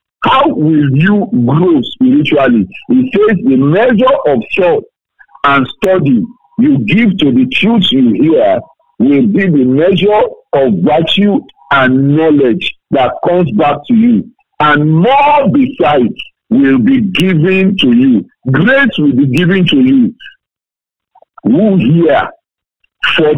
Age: 50-69